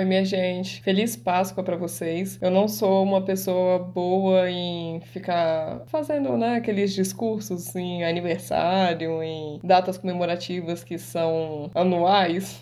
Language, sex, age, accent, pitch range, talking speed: Portuguese, female, 20-39, Brazilian, 175-195 Hz, 125 wpm